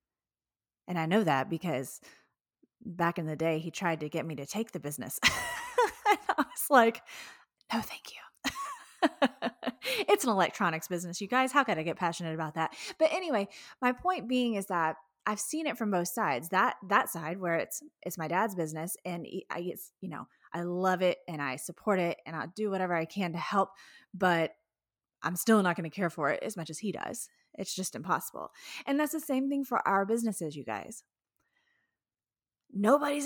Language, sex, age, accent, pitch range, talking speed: English, female, 20-39, American, 175-275 Hz, 195 wpm